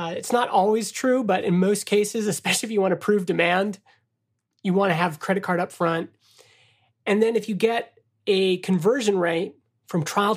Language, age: English, 30-49